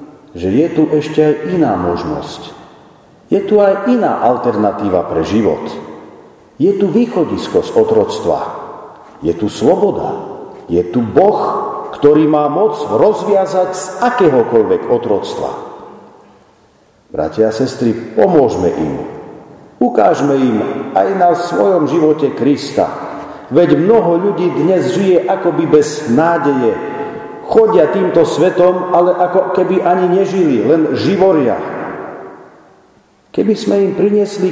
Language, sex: Slovak, male